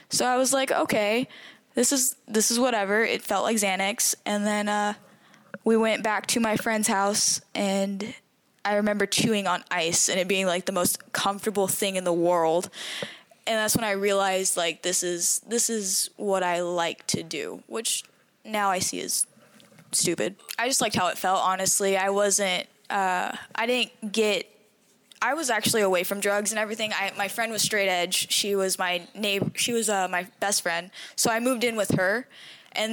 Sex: female